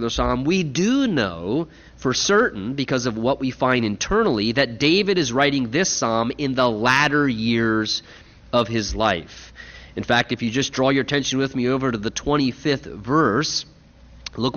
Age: 30-49